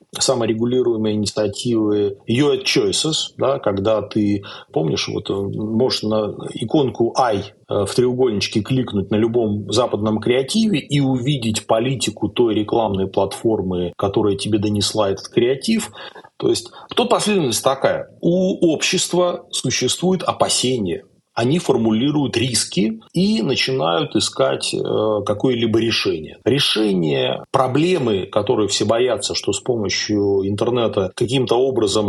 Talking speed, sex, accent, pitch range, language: 110 wpm, male, native, 105-140 Hz, Russian